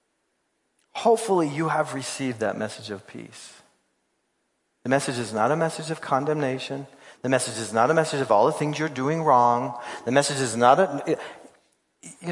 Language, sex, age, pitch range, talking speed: English, male, 40-59, 130-205 Hz, 170 wpm